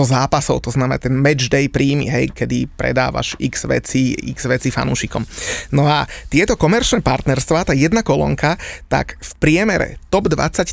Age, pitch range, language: 30-49, 140-175 Hz, Slovak